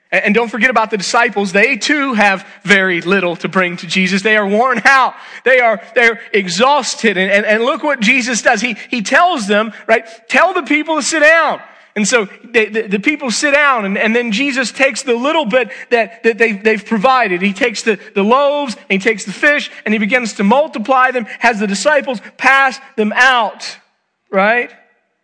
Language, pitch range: English, 185-235 Hz